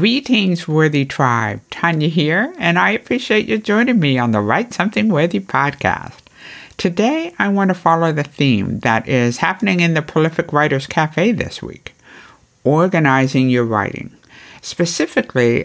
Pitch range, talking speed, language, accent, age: 125-190 Hz, 145 wpm, English, American, 60-79